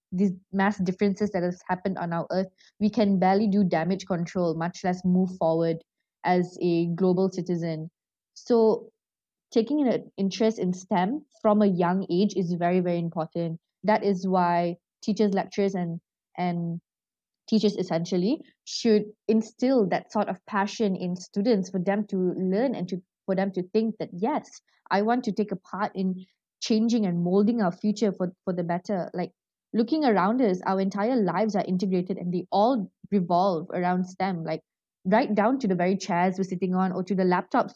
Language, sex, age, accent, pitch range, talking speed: English, female, 20-39, Malaysian, 175-210 Hz, 175 wpm